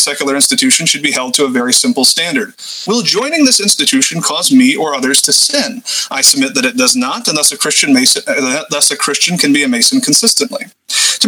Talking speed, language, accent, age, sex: 220 wpm, English, American, 30-49, male